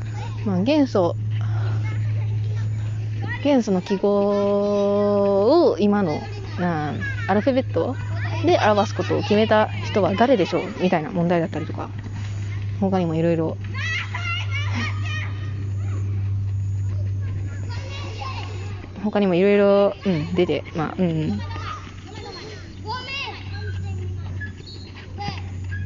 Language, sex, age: Japanese, female, 20-39